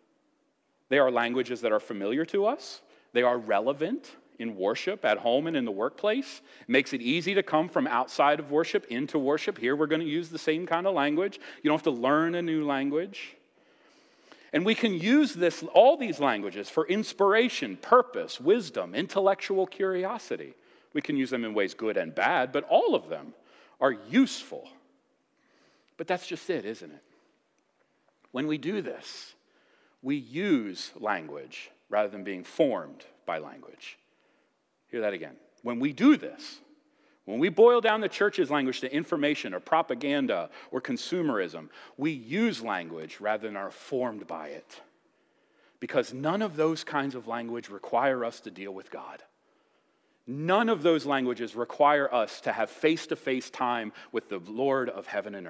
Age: 40-59